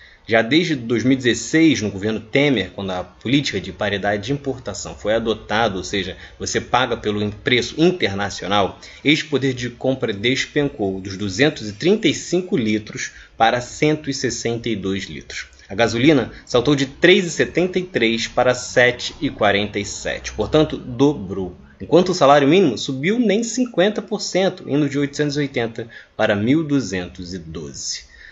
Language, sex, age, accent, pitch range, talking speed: Portuguese, male, 20-39, Brazilian, 105-155 Hz, 115 wpm